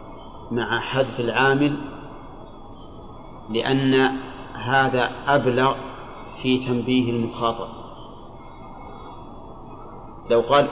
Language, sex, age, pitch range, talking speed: Arabic, male, 40-59, 120-140 Hz, 60 wpm